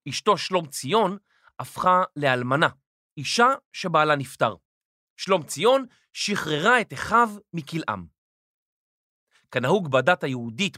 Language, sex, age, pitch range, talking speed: Hebrew, male, 40-59, 145-210 Hz, 95 wpm